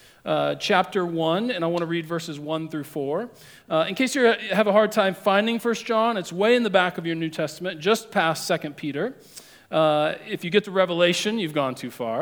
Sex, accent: male, American